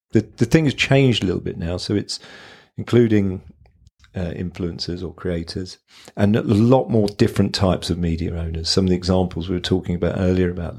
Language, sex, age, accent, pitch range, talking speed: English, male, 40-59, British, 90-105 Hz, 195 wpm